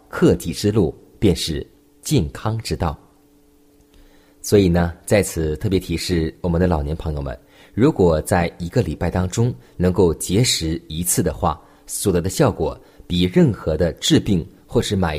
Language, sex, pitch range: Chinese, male, 85-115 Hz